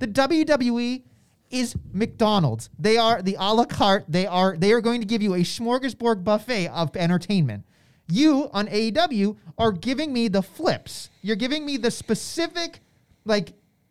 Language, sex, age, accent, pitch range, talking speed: English, male, 30-49, American, 165-260 Hz, 160 wpm